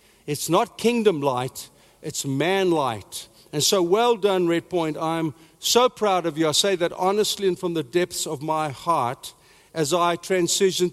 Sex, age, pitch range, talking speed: male, 60-79, 165-200 Hz, 175 wpm